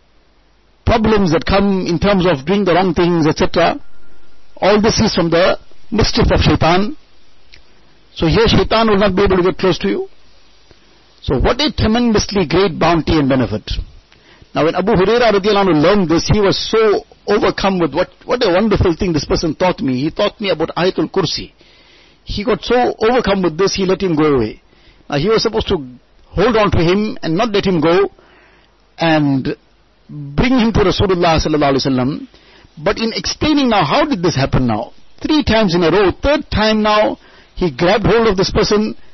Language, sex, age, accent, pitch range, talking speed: English, male, 60-79, Indian, 170-235 Hz, 180 wpm